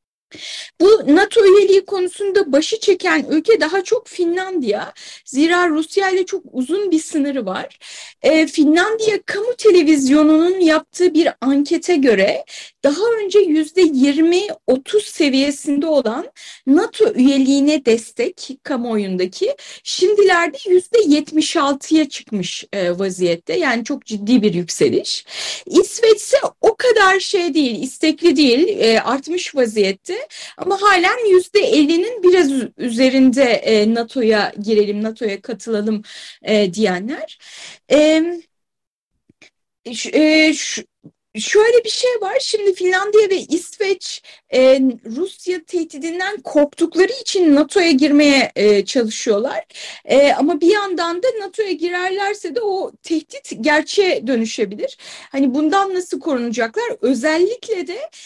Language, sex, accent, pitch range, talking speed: Turkish, female, native, 270-385 Hz, 110 wpm